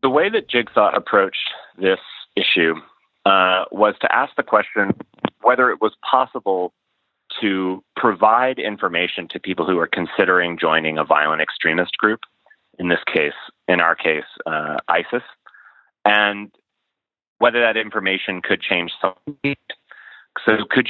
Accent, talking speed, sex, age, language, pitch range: American, 135 wpm, male, 30-49, English, 85-100 Hz